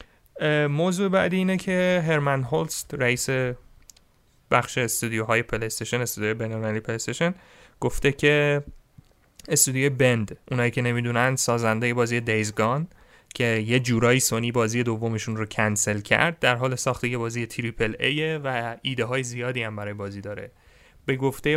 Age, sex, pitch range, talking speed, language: 30-49, male, 115-140 Hz, 140 wpm, Persian